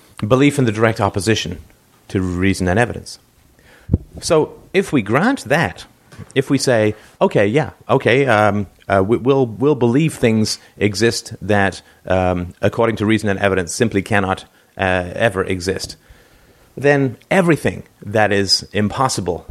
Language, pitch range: English, 95-120 Hz